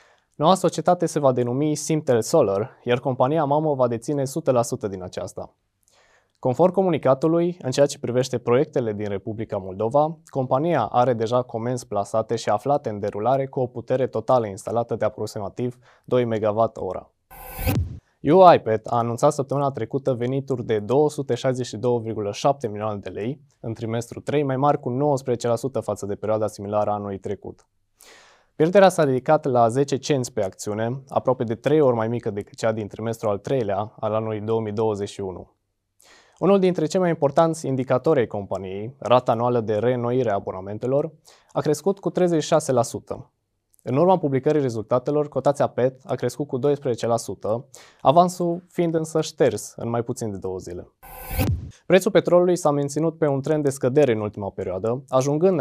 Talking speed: 150 wpm